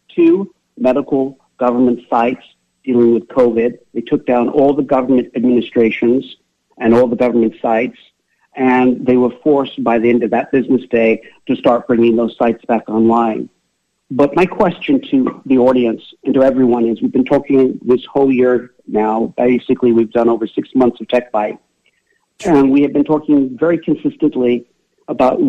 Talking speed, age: 165 wpm, 50-69